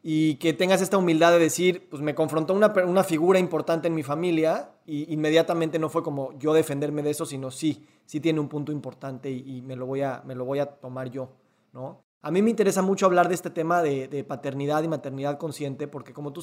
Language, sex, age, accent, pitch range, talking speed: Spanish, male, 30-49, Mexican, 145-175 Hz, 235 wpm